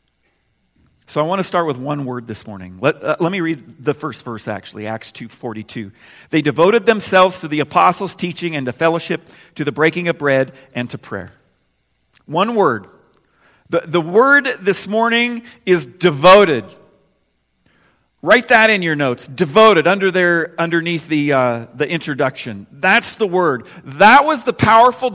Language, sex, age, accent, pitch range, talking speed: English, male, 40-59, American, 155-225 Hz, 160 wpm